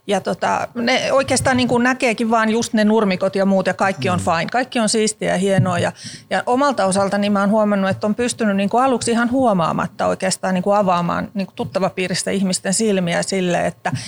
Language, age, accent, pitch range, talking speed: Finnish, 40-59, native, 190-230 Hz, 210 wpm